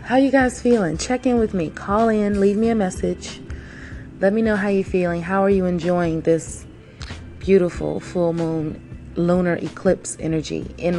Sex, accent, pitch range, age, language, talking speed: female, American, 155-195 Hz, 30-49, English, 175 wpm